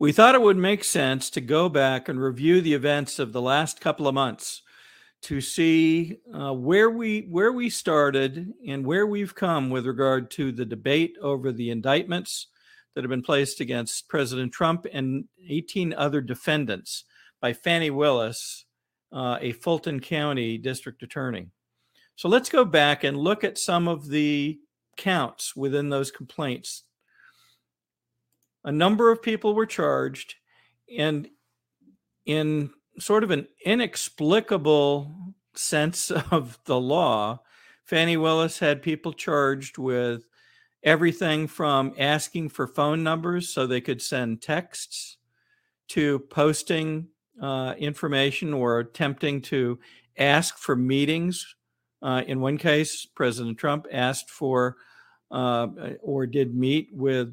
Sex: male